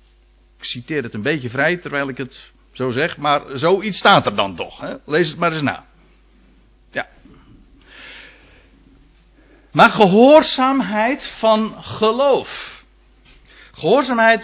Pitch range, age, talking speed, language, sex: 145-230 Hz, 60-79, 115 wpm, Dutch, male